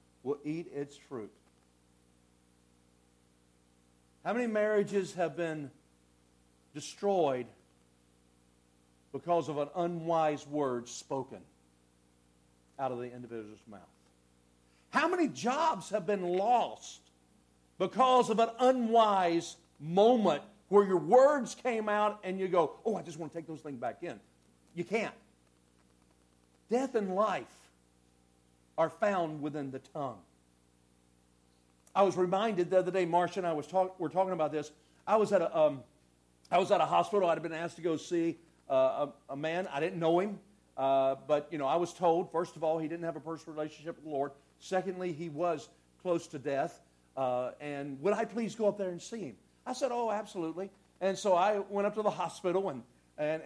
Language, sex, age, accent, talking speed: English, male, 50-69, American, 170 wpm